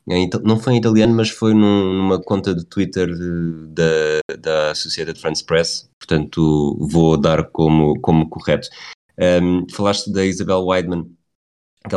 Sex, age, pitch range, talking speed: male, 20-39, 85-105 Hz, 130 wpm